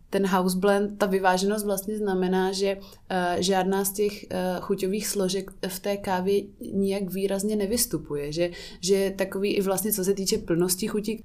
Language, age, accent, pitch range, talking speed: Czech, 20-39, native, 175-195 Hz, 155 wpm